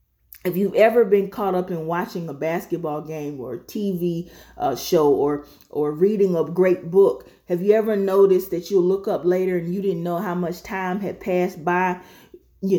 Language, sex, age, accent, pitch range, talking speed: English, female, 30-49, American, 175-215 Hz, 195 wpm